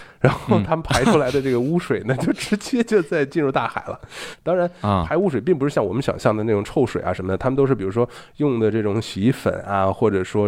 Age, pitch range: 20-39, 100-130 Hz